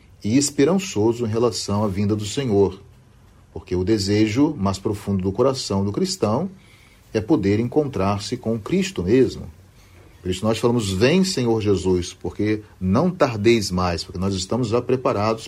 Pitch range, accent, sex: 95-120 Hz, Brazilian, male